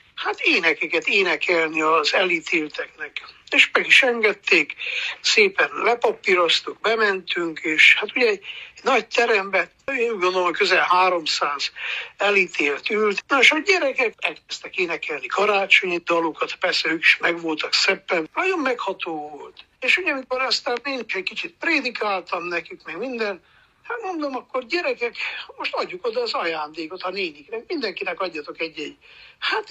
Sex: male